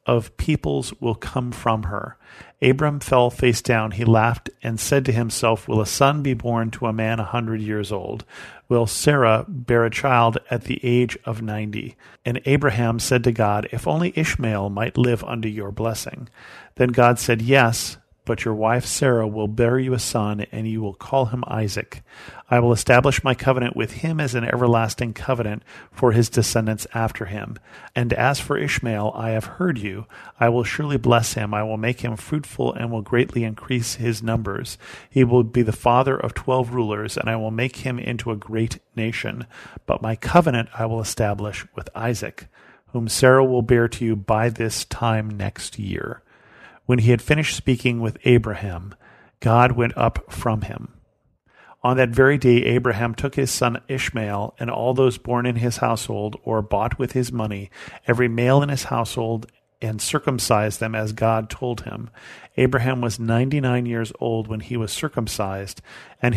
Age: 40-59